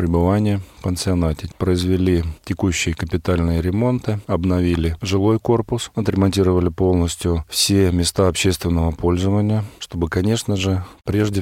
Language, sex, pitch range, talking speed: Russian, male, 90-105 Hz, 100 wpm